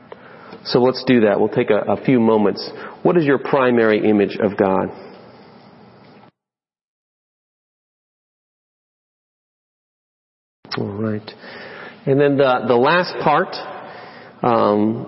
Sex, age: male, 40-59